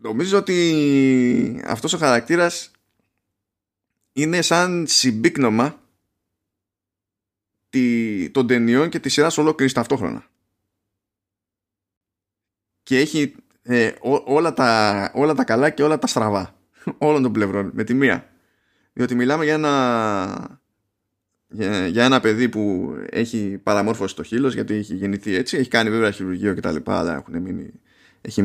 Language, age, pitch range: Greek, 20-39, 100-140 Hz